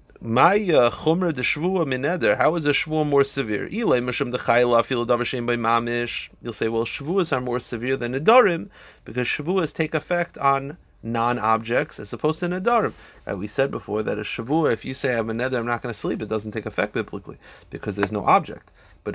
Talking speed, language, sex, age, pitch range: 195 wpm, English, male, 30-49, 115-145 Hz